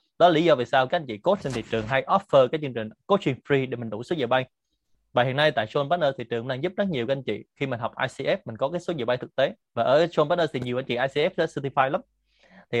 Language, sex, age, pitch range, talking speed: Vietnamese, male, 20-39, 125-160 Hz, 315 wpm